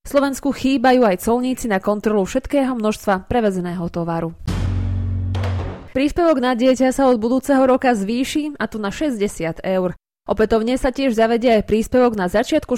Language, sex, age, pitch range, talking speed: Slovak, female, 20-39, 195-250 Hz, 145 wpm